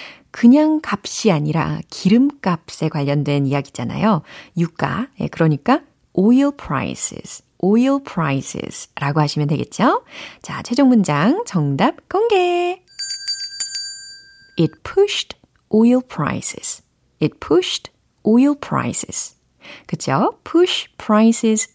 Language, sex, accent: Korean, female, native